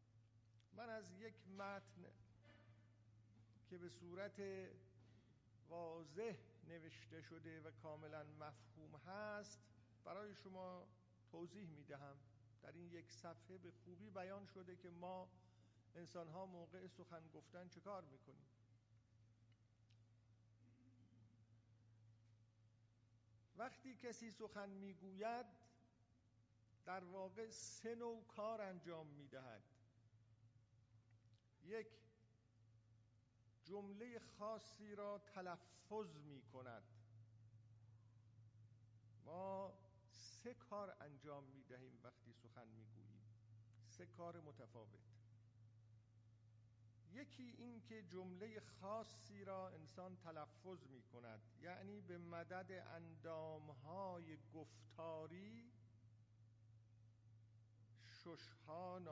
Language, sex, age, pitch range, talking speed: Persian, male, 50-69, 110-180 Hz, 85 wpm